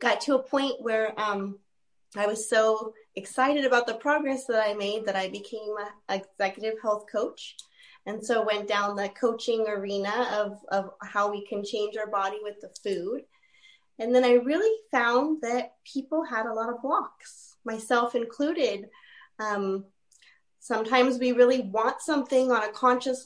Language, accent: English, American